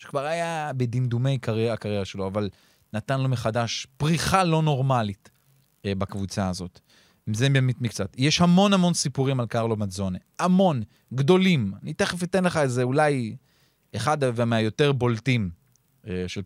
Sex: male